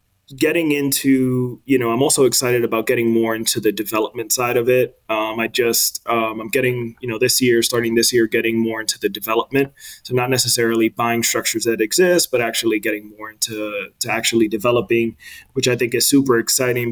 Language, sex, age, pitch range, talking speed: English, male, 20-39, 110-125 Hz, 195 wpm